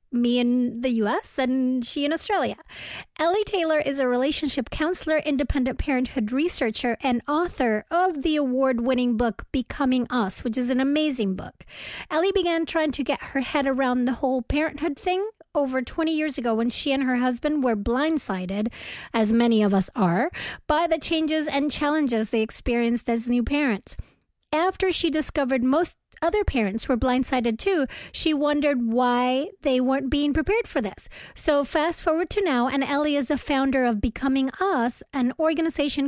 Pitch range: 245-315 Hz